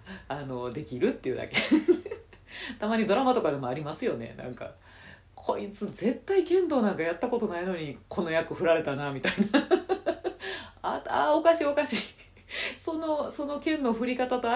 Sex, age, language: female, 40-59, Japanese